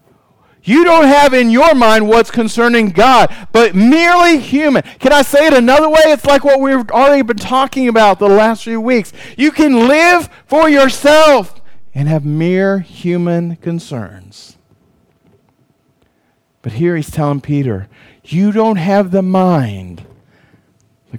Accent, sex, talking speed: American, male, 145 wpm